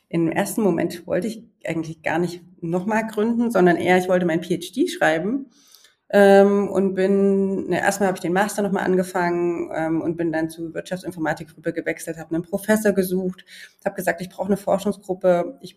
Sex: female